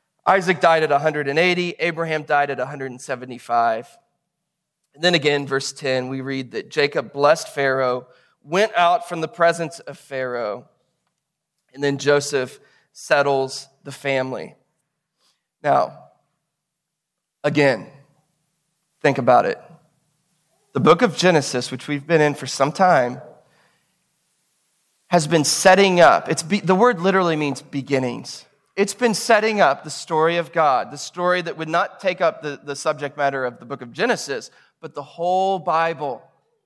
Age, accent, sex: 30-49, American, male